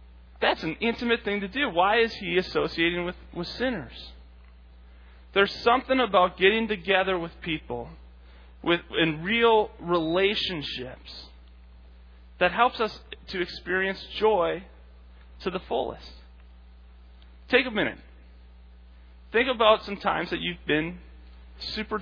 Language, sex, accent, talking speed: English, male, American, 120 wpm